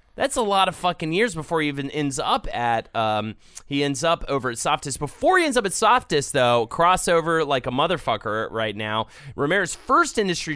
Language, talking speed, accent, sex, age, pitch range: English, 200 wpm, American, male, 30-49, 130-170 Hz